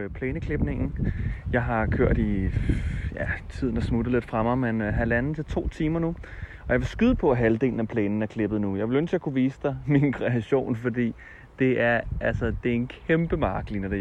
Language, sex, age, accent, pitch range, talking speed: Danish, male, 30-49, native, 100-120 Hz, 215 wpm